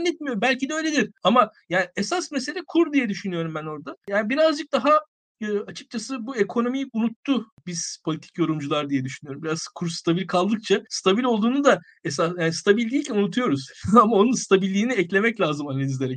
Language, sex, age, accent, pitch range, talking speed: Turkish, male, 50-69, native, 165-250 Hz, 165 wpm